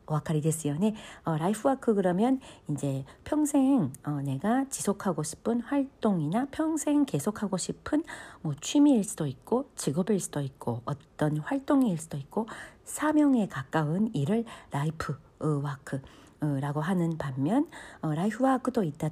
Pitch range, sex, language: 150-240 Hz, female, Korean